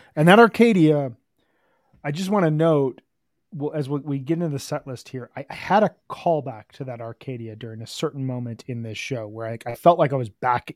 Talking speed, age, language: 220 wpm, 30-49, English